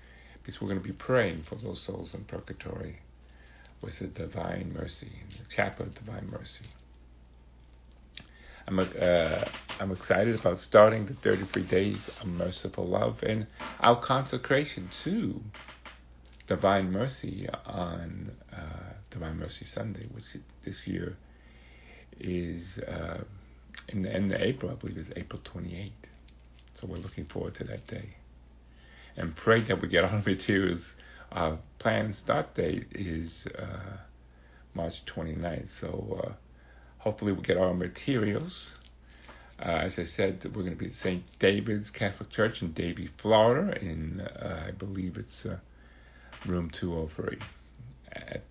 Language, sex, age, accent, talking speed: English, male, 60-79, American, 135 wpm